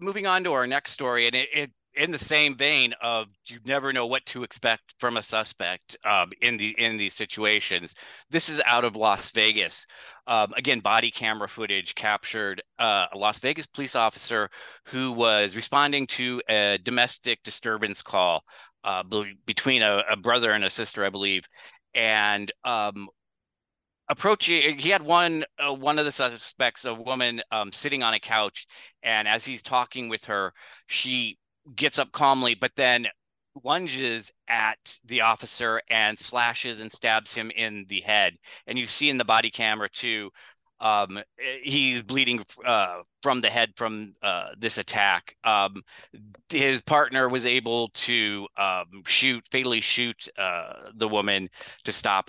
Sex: male